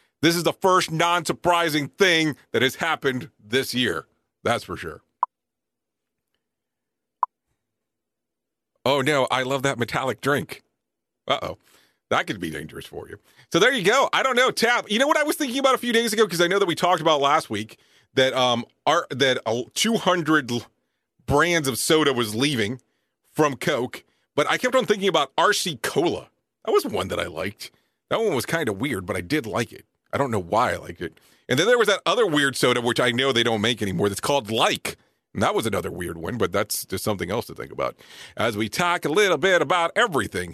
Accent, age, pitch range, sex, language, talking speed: American, 40-59, 130-210 Hz, male, English, 205 wpm